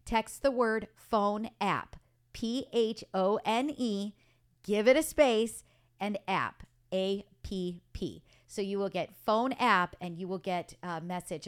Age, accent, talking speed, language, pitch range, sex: 40-59, American, 130 wpm, English, 185-235 Hz, female